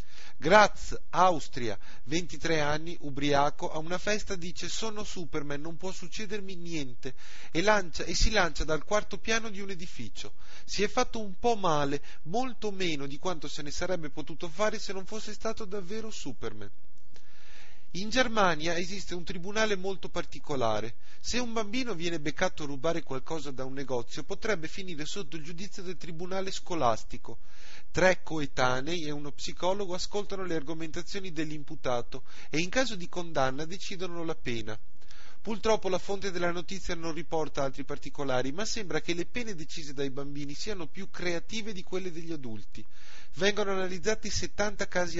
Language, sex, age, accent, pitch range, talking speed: Italian, male, 30-49, native, 145-200 Hz, 155 wpm